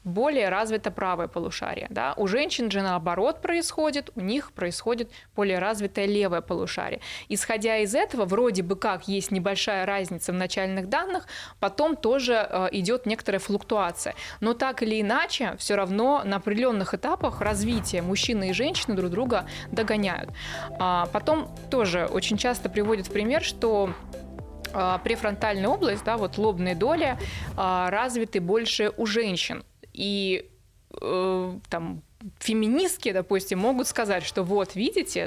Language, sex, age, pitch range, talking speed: Russian, female, 20-39, 190-230 Hz, 135 wpm